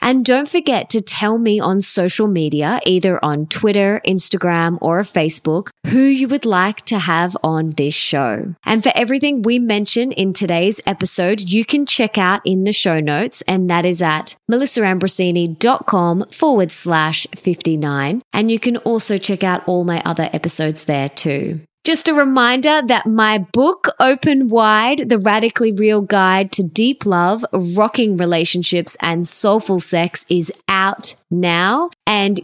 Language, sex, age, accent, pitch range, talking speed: English, female, 20-39, Australian, 170-225 Hz, 155 wpm